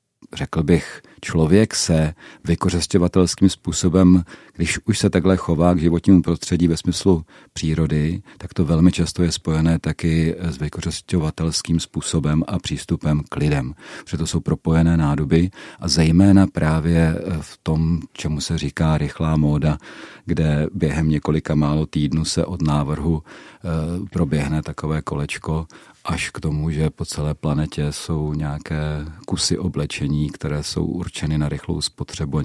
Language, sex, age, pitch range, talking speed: Czech, male, 40-59, 75-90 Hz, 135 wpm